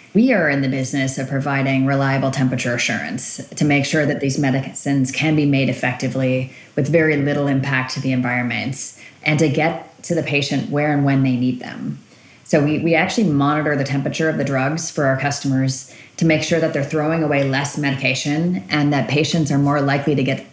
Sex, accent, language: female, American, English